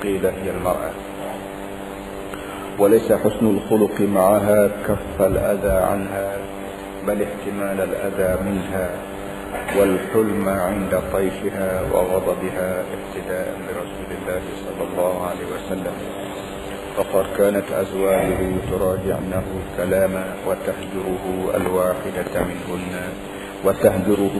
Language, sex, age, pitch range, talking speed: Malay, male, 50-69, 95-100 Hz, 80 wpm